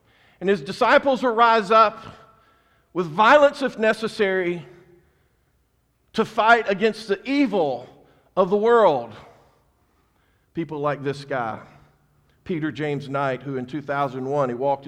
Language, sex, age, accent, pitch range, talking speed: English, male, 50-69, American, 135-160 Hz, 120 wpm